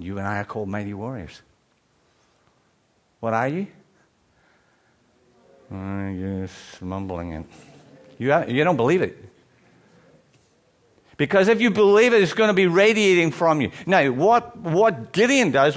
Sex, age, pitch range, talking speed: male, 60-79, 120-175 Hz, 135 wpm